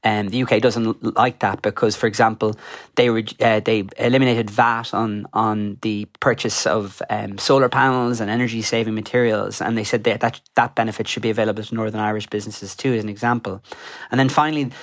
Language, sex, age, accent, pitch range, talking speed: English, male, 30-49, Irish, 110-120 Hz, 195 wpm